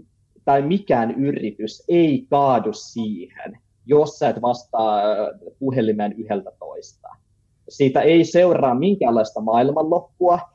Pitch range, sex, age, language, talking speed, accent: 120-175 Hz, male, 30-49, Finnish, 95 wpm, native